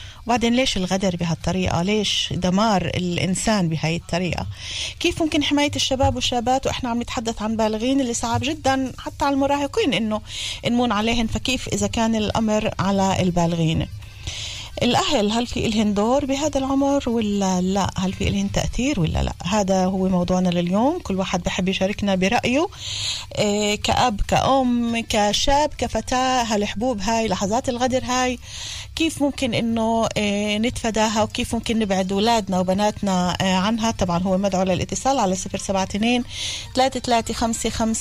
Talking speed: 130 wpm